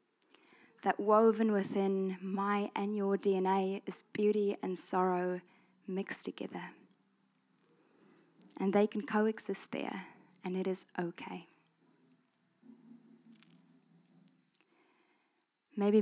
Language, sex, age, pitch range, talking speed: English, female, 20-39, 180-215 Hz, 85 wpm